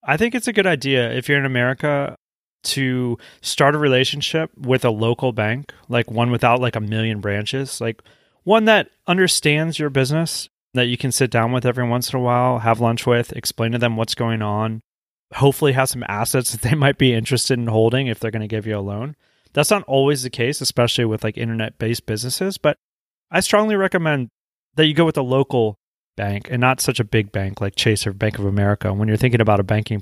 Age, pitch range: 30-49, 110-140 Hz